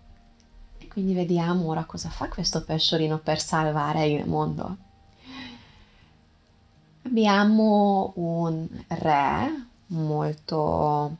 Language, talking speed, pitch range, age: Italian, 80 wpm, 150-190 Hz, 20-39